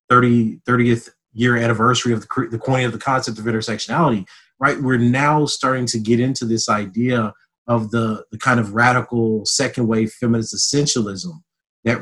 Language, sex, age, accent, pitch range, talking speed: English, male, 30-49, American, 110-125 Hz, 160 wpm